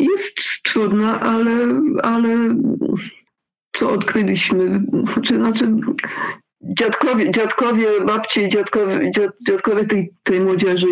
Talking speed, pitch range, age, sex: 80 wpm, 170-220 Hz, 50-69, female